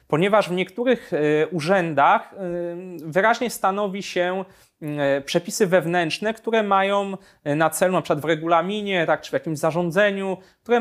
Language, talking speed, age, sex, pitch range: Polish, 130 wpm, 30-49, male, 145-185 Hz